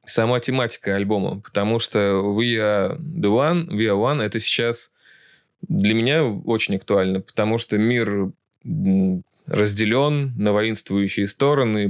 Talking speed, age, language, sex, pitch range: 125 wpm, 20-39, Russian, male, 100-130 Hz